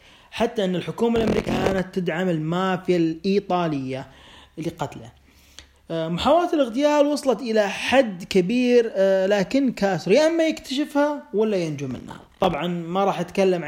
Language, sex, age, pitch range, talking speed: Arabic, male, 30-49, 160-195 Hz, 120 wpm